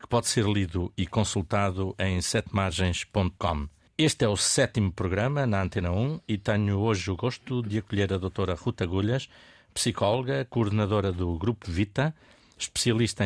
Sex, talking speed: male, 150 wpm